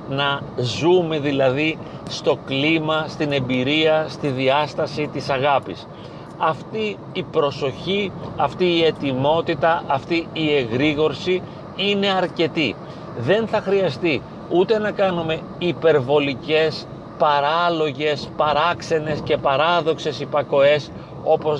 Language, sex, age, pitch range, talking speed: Greek, male, 40-59, 145-165 Hz, 95 wpm